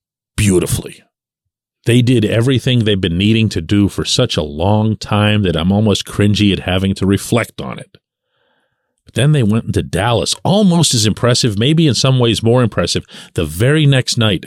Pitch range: 105-150 Hz